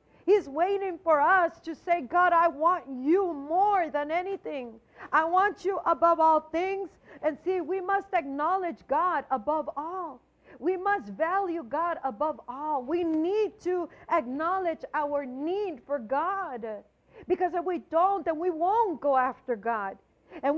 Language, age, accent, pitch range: English, 50-69, American, 295-370 Hz